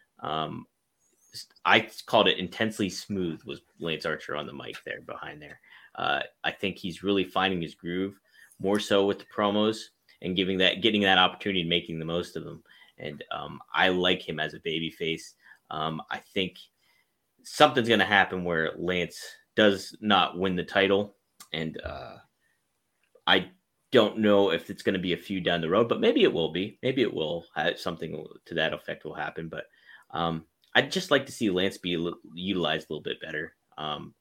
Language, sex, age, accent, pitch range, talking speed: English, male, 30-49, American, 85-100 Hz, 190 wpm